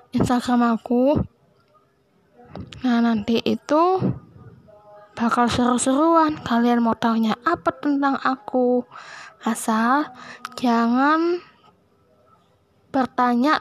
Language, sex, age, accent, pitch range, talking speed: Indonesian, female, 10-29, native, 235-295 Hz, 70 wpm